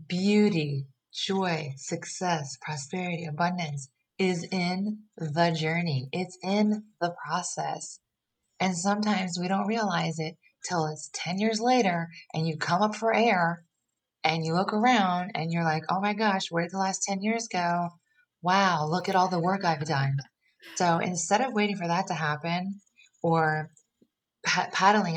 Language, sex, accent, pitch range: English, female, American, 155-190 Hz